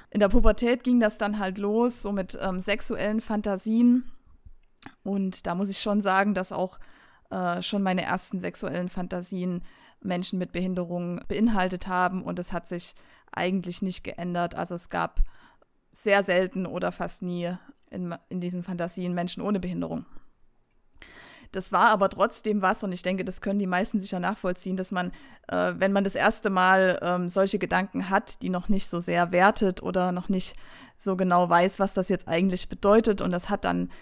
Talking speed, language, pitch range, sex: 180 wpm, German, 180-205 Hz, female